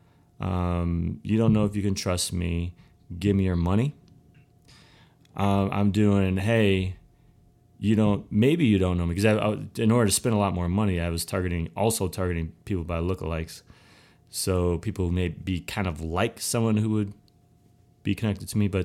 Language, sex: English, male